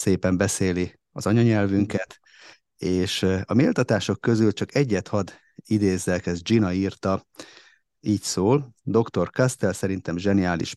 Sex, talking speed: male, 115 wpm